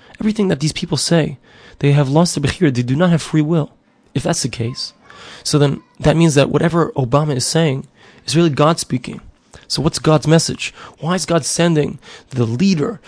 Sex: male